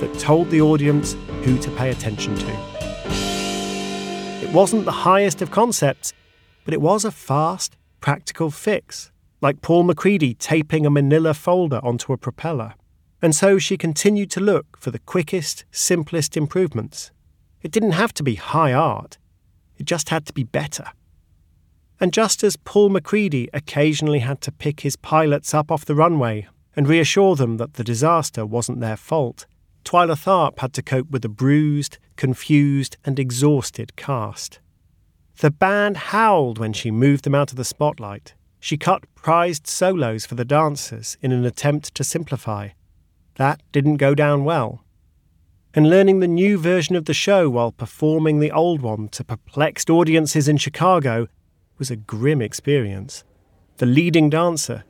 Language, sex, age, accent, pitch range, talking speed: English, male, 40-59, British, 110-160 Hz, 160 wpm